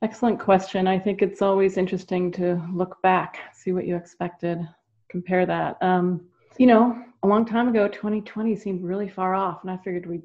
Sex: female